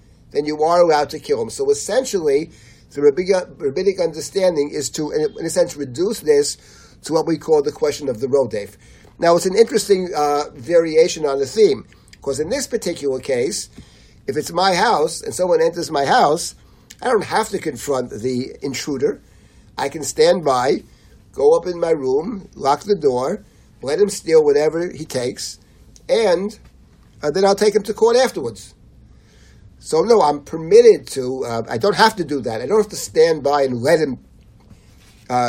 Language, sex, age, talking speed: English, male, 50-69, 185 wpm